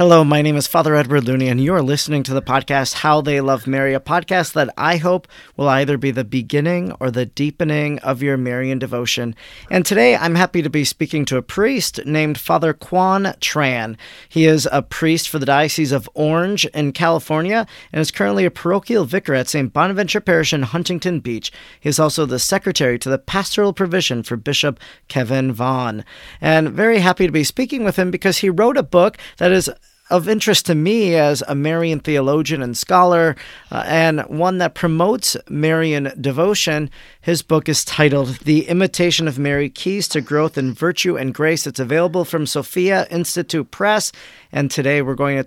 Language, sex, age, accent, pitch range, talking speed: English, male, 40-59, American, 135-175 Hz, 190 wpm